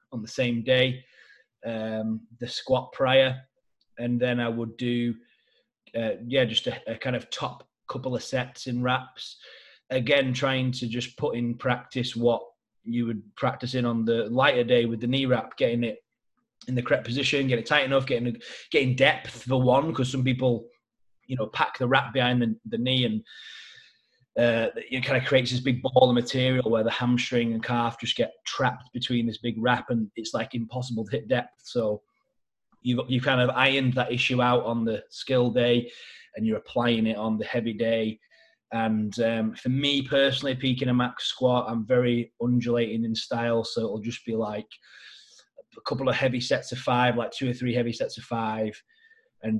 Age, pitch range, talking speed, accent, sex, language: 20-39, 115-130 Hz, 190 wpm, British, male, English